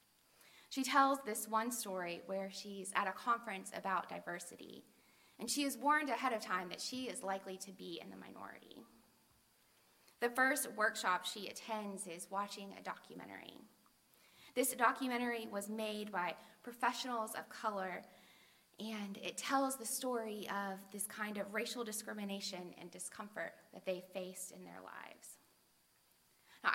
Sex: female